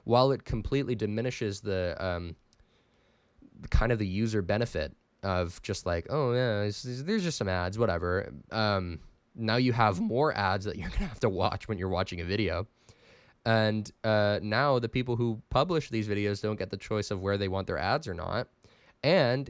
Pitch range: 95-125 Hz